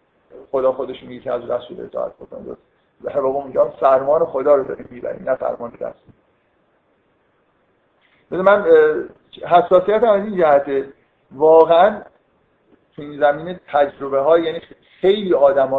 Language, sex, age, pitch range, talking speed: Persian, male, 50-69, 130-165 Hz, 130 wpm